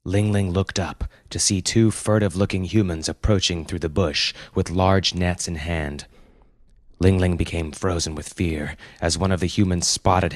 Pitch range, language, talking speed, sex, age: 80-100 Hz, English, 175 wpm, male, 30-49